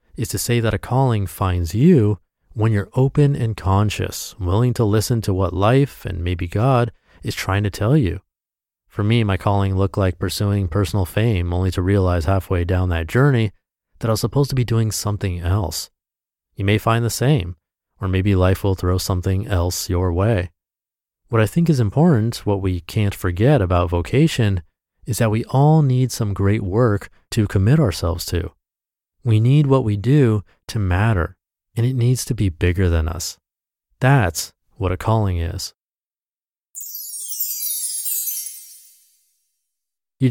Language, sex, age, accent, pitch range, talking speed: English, male, 30-49, American, 90-115 Hz, 165 wpm